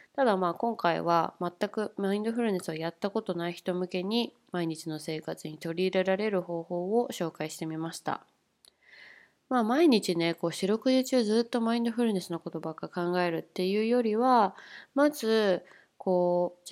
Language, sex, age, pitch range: Japanese, female, 20-39, 170-230 Hz